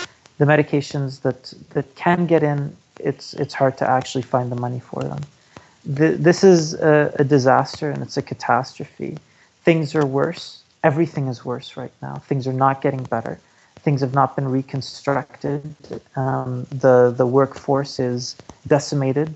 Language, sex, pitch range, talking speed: English, male, 130-145 Hz, 155 wpm